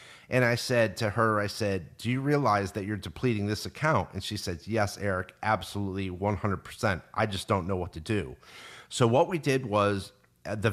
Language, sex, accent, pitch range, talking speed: English, male, American, 100-125 Hz, 195 wpm